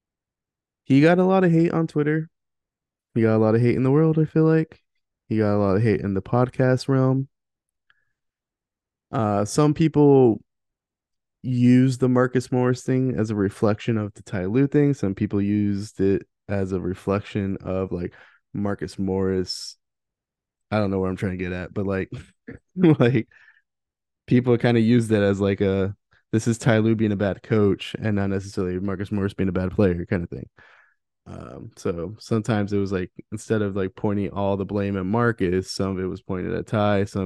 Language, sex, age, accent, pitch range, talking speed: English, male, 20-39, American, 100-125 Hz, 195 wpm